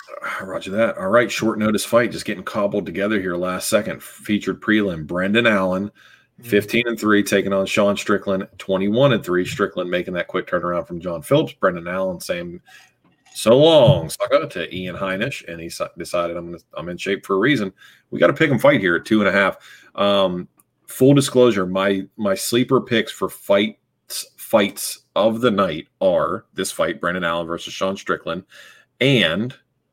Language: English